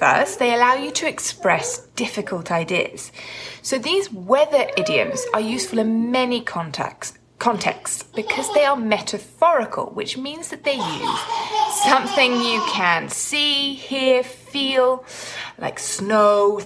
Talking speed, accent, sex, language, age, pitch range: 125 wpm, British, female, English, 20-39, 205-295 Hz